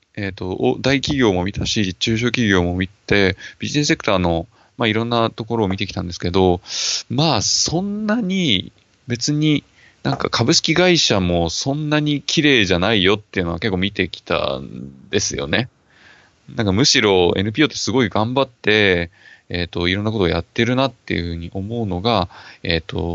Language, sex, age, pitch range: Japanese, male, 20-39, 90-120 Hz